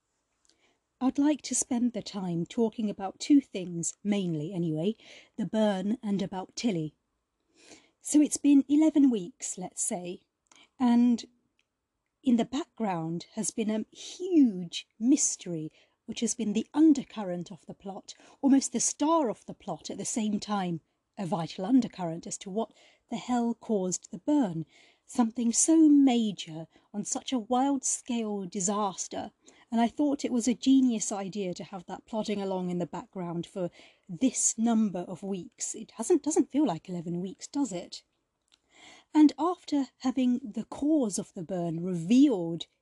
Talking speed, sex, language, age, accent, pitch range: 155 wpm, female, English, 40-59, British, 190-270 Hz